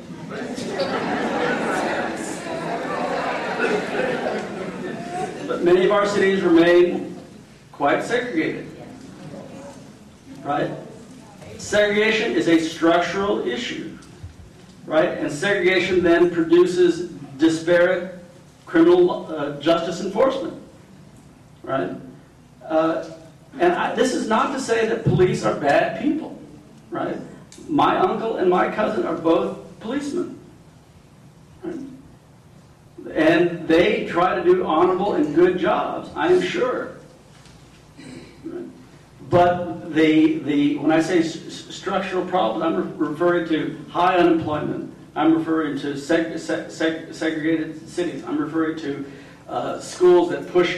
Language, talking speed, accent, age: English, 110 wpm, American, 50-69